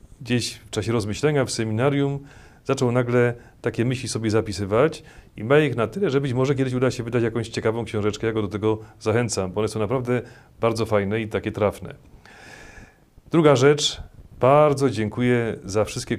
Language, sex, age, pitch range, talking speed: Polish, male, 40-59, 105-130 Hz, 175 wpm